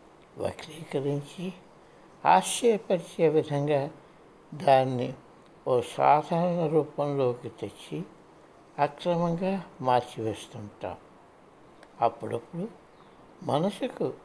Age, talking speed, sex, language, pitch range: 60-79, 50 wpm, male, Telugu, 135-175 Hz